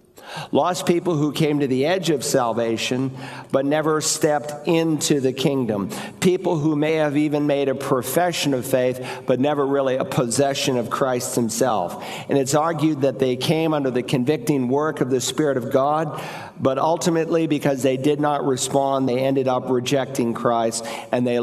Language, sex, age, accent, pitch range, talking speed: English, male, 50-69, American, 130-150 Hz, 175 wpm